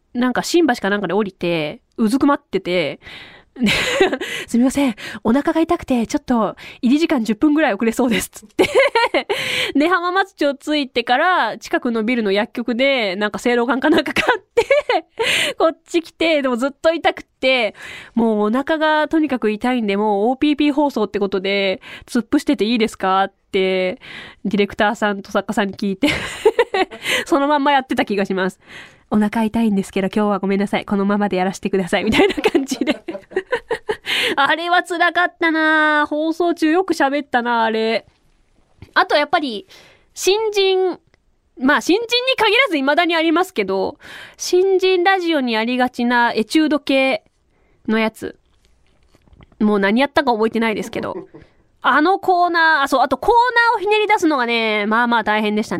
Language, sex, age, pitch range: Japanese, female, 20-39, 215-335 Hz